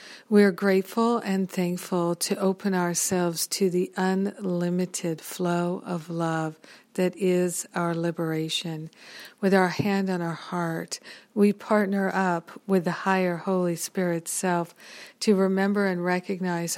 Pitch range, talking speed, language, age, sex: 175-195 Hz, 130 wpm, English, 50-69, female